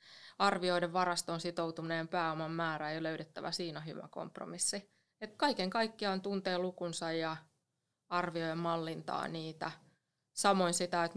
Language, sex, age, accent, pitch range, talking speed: Finnish, female, 20-39, native, 165-190 Hz, 130 wpm